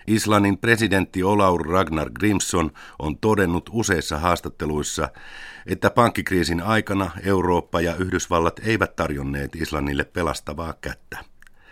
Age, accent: 50-69, native